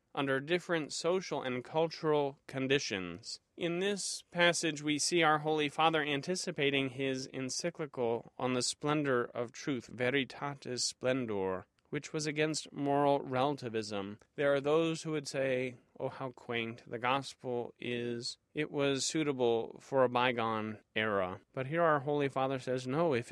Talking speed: 145 wpm